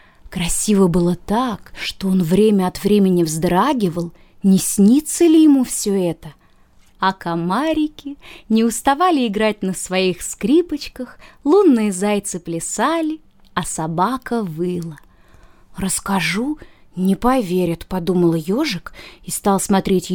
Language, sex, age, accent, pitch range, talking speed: Russian, female, 20-39, native, 175-240 Hz, 110 wpm